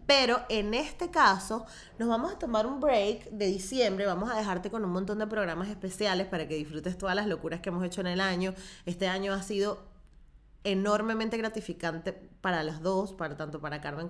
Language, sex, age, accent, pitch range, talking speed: Spanish, female, 20-39, American, 170-210 Hz, 190 wpm